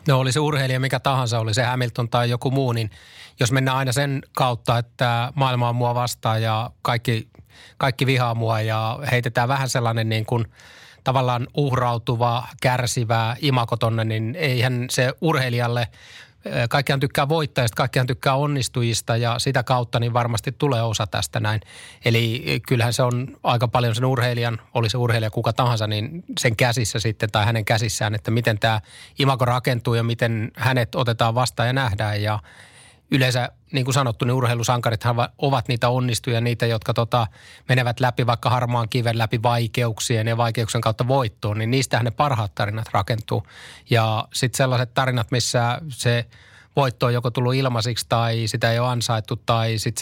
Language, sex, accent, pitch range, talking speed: Finnish, male, native, 115-130 Hz, 165 wpm